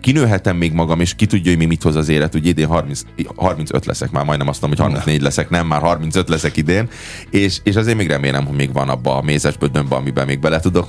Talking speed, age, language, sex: 240 wpm, 30-49, Hungarian, male